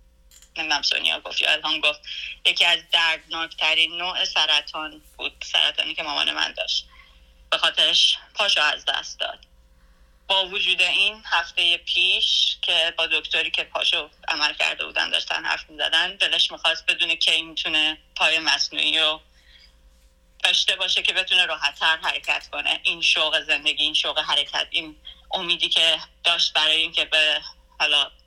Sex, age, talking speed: female, 10-29, 145 wpm